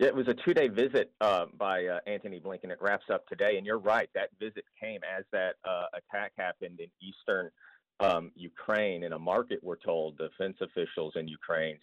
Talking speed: 195 wpm